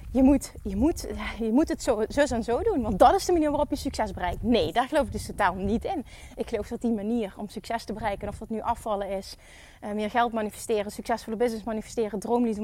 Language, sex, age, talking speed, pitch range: Dutch, female, 30-49, 235 wpm, 210-270 Hz